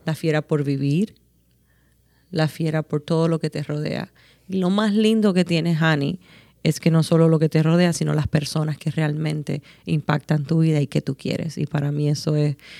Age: 30-49